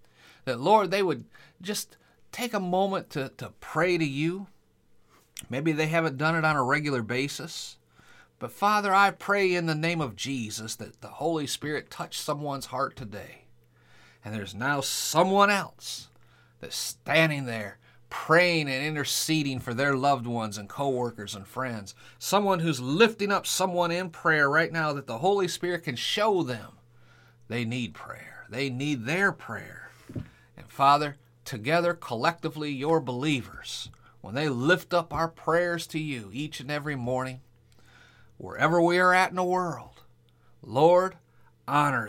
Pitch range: 120-170 Hz